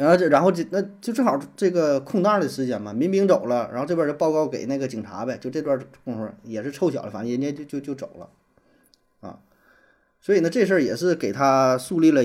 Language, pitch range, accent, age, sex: Chinese, 115-155 Hz, native, 20-39, male